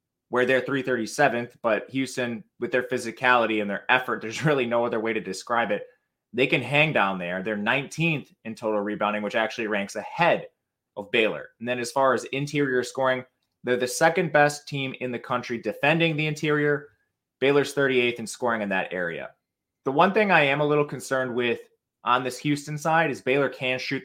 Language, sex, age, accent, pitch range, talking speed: English, male, 20-39, American, 120-155 Hz, 190 wpm